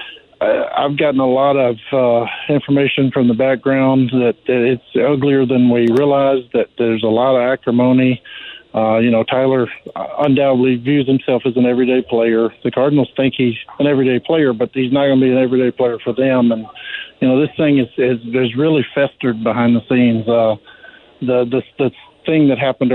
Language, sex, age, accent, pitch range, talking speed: English, male, 50-69, American, 120-135 Hz, 185 wpm